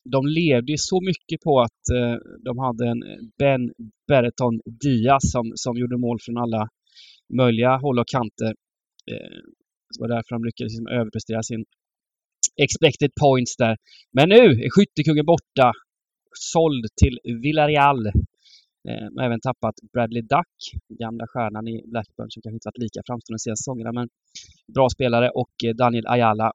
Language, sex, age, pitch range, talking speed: Swedish, male, 20-39, 115-140 Hz, 160 wpm